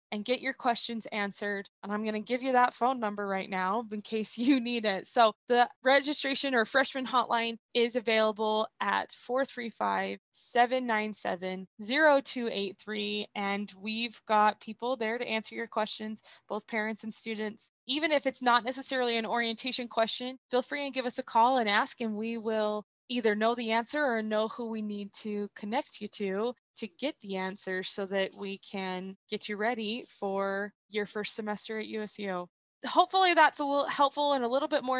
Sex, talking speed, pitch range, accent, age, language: female, 175 wpm, 210-250 Hz, American, 20-39, English